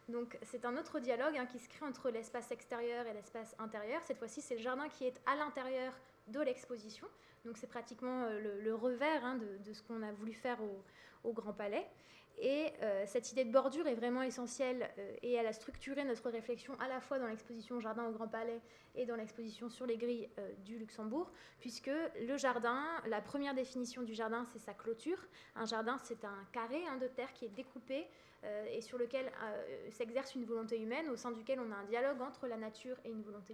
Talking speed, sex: 215 wpm, female